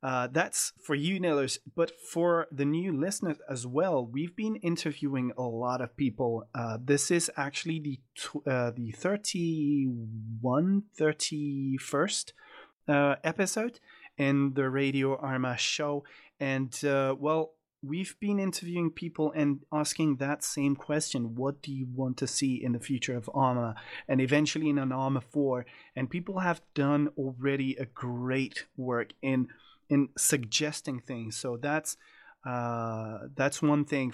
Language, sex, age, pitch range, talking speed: English, male, 30-49, 125-155 Hz, 145 wpm